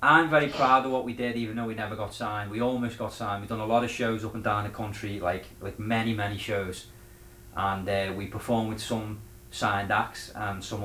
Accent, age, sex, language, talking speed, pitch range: British, 30-49, male, English, 240 wpm, 100-120 Hz